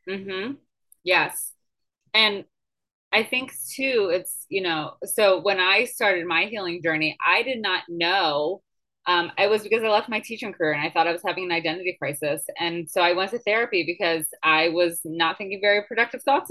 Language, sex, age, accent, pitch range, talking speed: English, female, 20-39, American, 175-220 Hz, 195 wpm